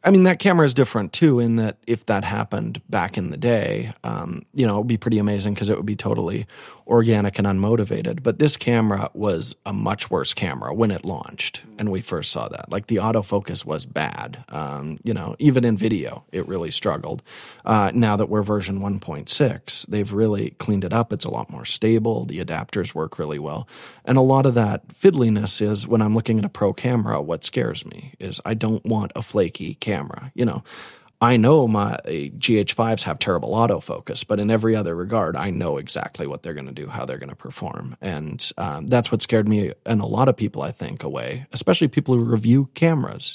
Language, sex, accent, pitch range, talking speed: English, male, American, 100-120 Hz, 215 wpm